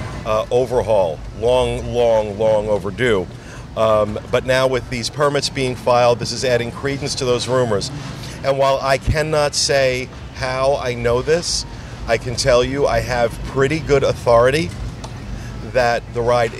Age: 40-59